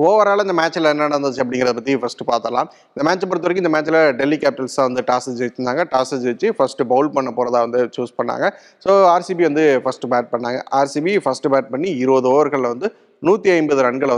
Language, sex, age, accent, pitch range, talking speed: Tamil, male, 30-49, native, 125-155 Hz, 190 wpm